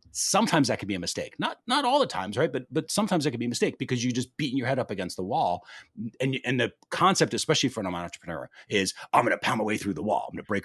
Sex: male